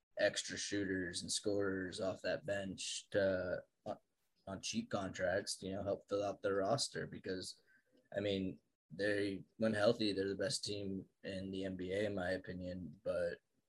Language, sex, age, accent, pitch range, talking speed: English, male, 20-39, American, 95-120 Hz, 160 wpm